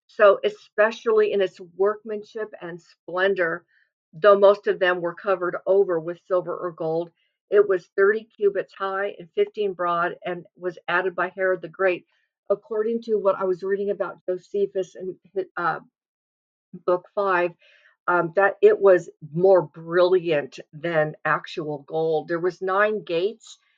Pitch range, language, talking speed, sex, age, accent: 175-200 Hz, English, 145 wpm, female, 50-69, American